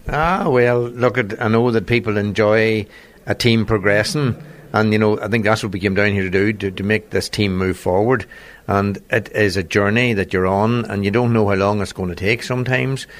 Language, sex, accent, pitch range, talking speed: English, male, Irish, 100-115 Hz, 225 wpm